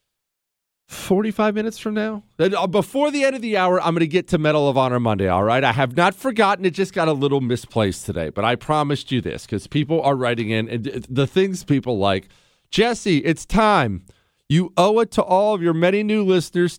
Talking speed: 215 wpm